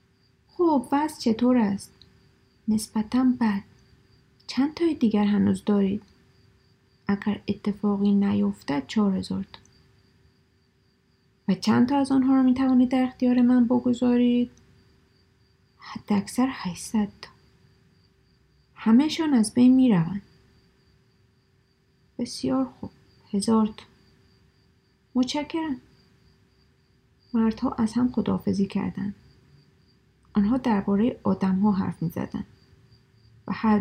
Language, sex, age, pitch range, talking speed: Persian, female, 30-49, 195-245 Hz, 95 wpm